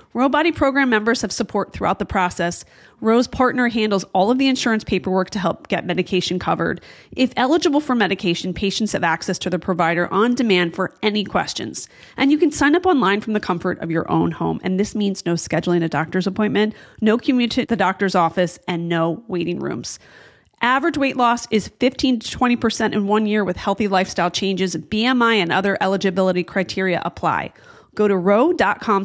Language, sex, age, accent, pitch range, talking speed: English, female, 30-49, American, 185-250 Hz, 190 wpm